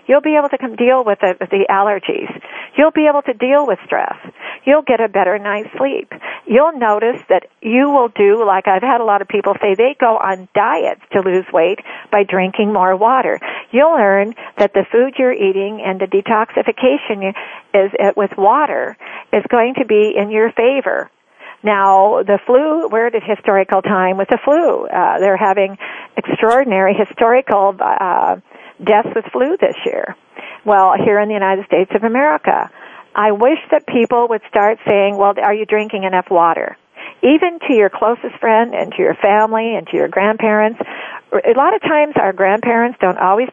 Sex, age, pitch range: female, 50-69, 200-250 Hz